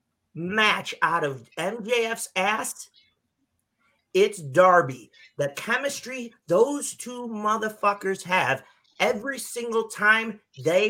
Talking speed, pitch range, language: 95 wpm, 175-245 Hz, English